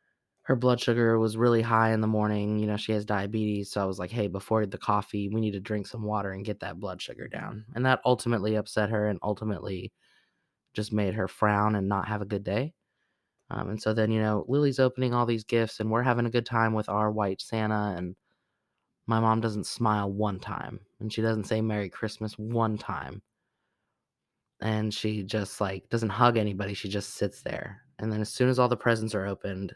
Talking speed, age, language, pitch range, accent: 220 wpm, 20-39, English, 105-125 Hz, American